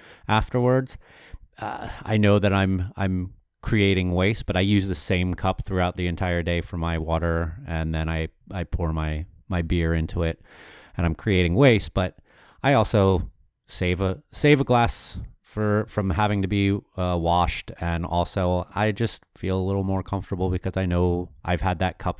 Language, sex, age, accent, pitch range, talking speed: English, male, 30-49, American, 85-105 Hz, 180 wpm